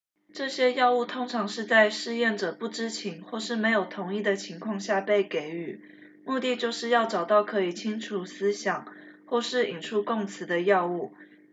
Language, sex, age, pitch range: Chinese, female, 20-39, 190-235 Hz